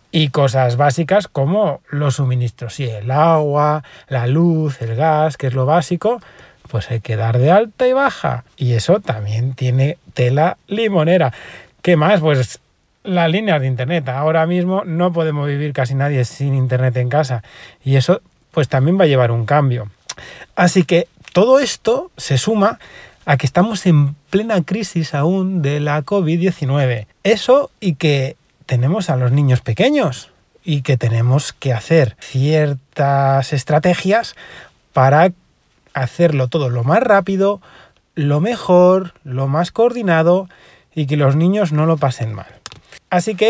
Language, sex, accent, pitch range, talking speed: Spanish, male, Spanish, 135-180 Hz, 150 wpm